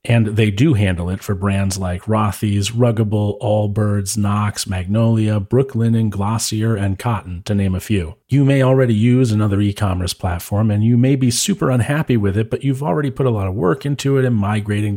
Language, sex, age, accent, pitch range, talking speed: English, male, 40-59, American, 95-115 Hz, 195 wpm